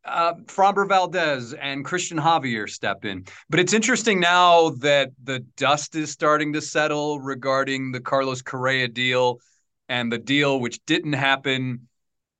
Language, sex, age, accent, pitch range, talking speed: English, male, 30-49, American, 135-165 Hz, 145 wpm